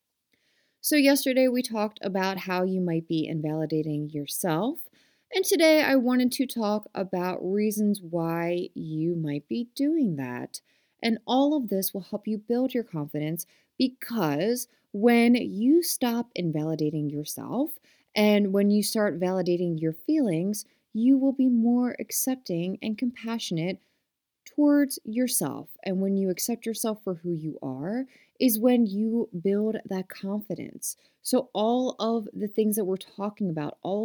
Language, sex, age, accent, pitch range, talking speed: English, female, 30-49, American, 180-245 Hz, 145 wpm